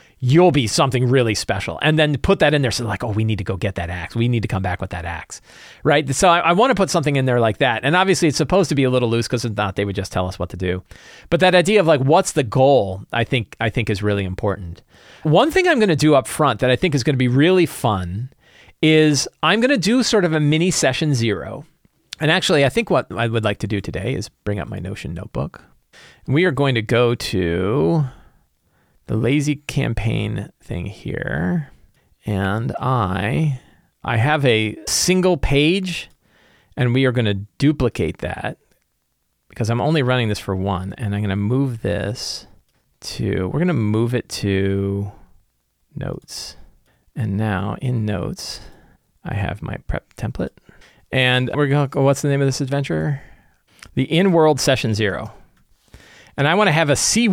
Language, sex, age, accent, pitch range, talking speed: English, male, 40-59, American, 105-155 Hz, 205 wpm